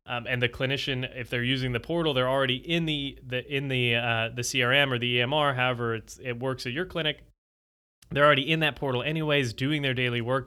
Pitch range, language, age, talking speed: 115-145 Hz, English, 20-39, 225 wpm